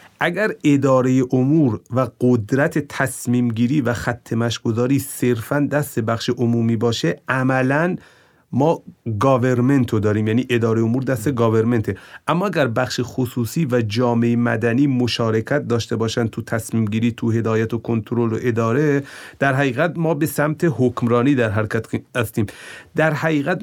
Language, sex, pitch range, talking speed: Persian, male, 115-140 Hz, 135 wpm